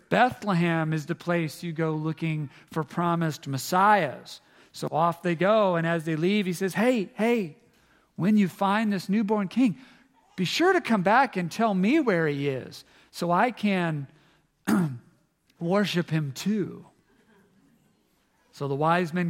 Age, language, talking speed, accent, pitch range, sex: 40-59, English, 150 wpm, American, 160-195 Hz, male